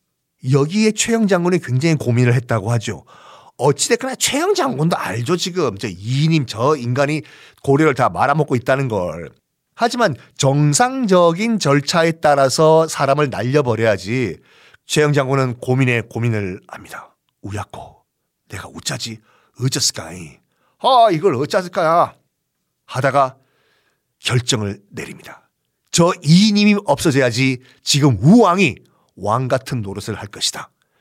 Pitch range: 125-165 Hz